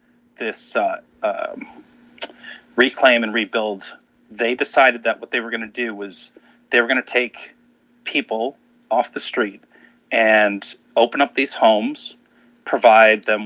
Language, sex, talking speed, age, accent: English, male, 135 wpm, 40-59, American